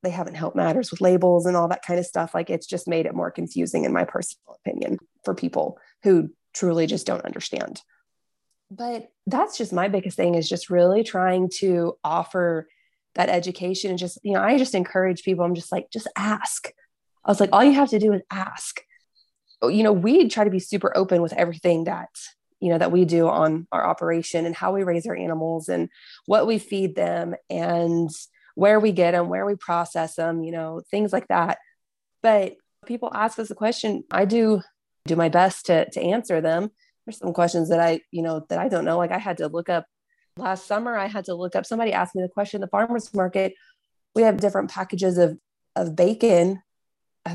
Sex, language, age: female, English, 20-39